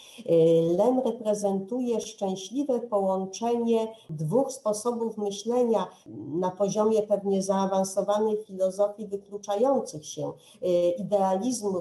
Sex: female